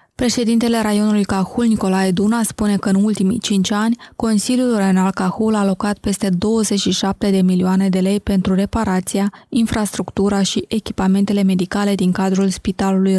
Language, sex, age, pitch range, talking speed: Romanian, female, 20-39, 190-220 Hz, 140 wpm